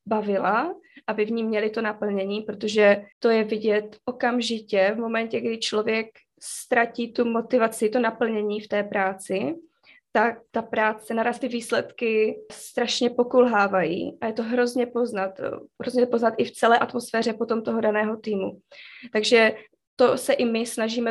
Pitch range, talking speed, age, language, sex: 210-240 Hz, 150 wpm, 20-39, Czech, female